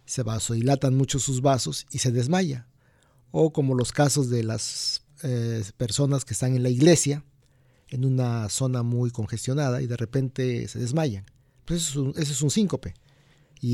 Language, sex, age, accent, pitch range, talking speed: Spanish, male, 50-69, Mexican, 125-150 Hz, 170 wpm